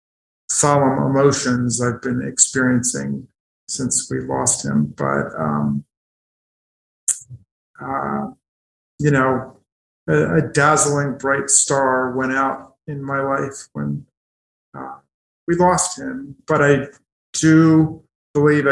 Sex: male